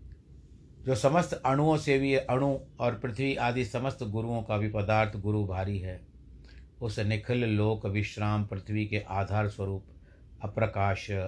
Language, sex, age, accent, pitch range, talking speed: Hindi, male, 60-79, native, 95-115 Hz, 140 wpm